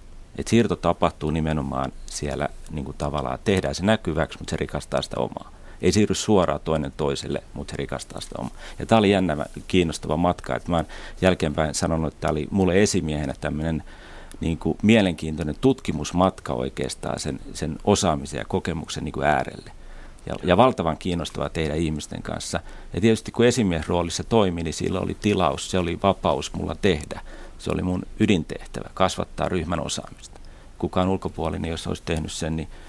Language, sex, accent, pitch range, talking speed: Finnish, male, native, 80-95 Hz, 155 wpm